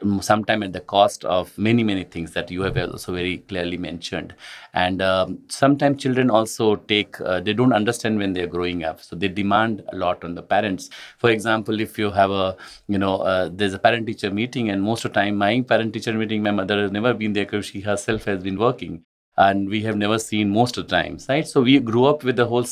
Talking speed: 230 wpm